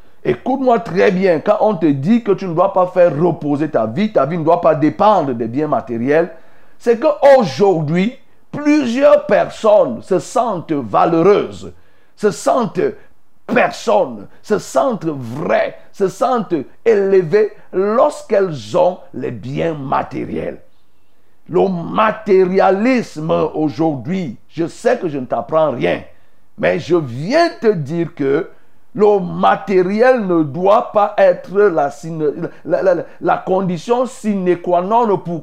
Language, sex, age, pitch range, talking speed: French, male, 50-69, 170-230 Hz, 125 wpm